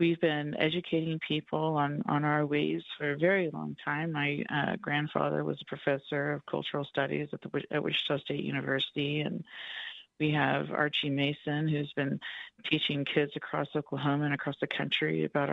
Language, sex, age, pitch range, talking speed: English, female, 40-59, 145-165 Hz, 170 wpm